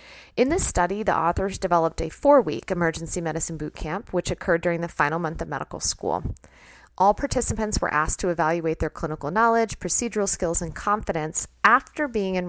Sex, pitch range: female, 160-190 Hz